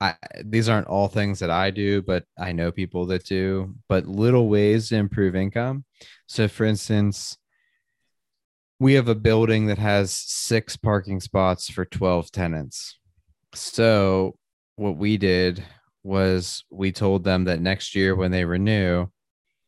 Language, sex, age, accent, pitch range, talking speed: English, male, 20-39, American, 90-100 Hz, 150 wpm